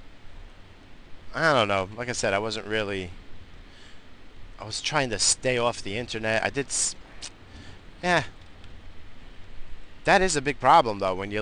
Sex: male